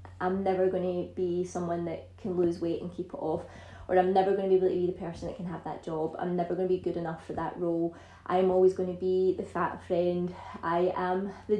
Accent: British